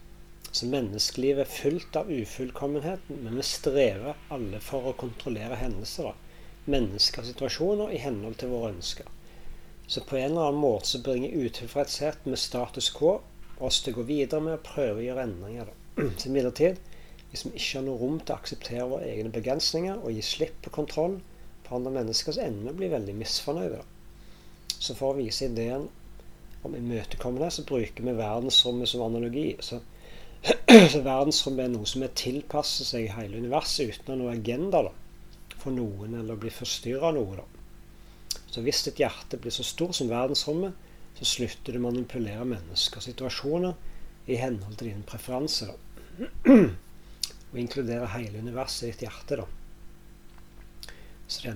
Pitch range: 115-140 Hz